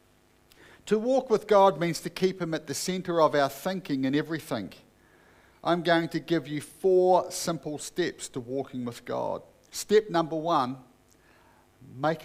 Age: 50-69